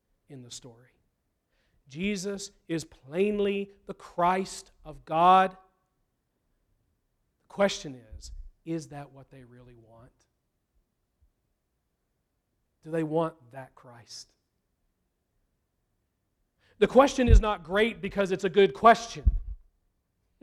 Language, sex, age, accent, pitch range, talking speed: English, male, 40-59, American, 165-250 Hz, 100 wpm